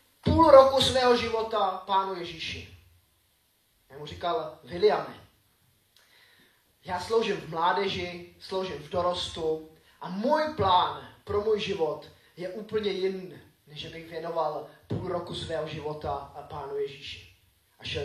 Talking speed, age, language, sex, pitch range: 125 wpm, 20-39, Czech, male, 150-200 Hz